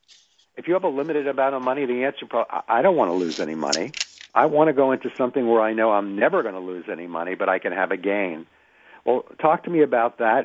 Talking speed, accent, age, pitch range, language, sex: 265 wpm, American, 60-79, 100-125 Hz, English, male